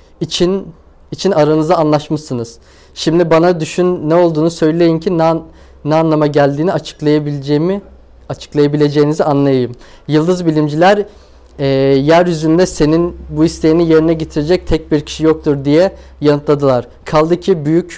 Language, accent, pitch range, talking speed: Turkish, native, 145-170 Hz, 125 wpm